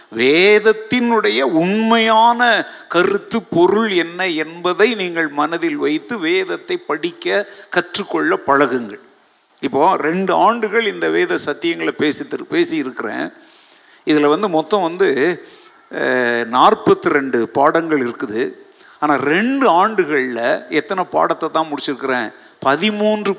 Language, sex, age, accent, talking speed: Tamil, male, 50-69, native, 95 wpm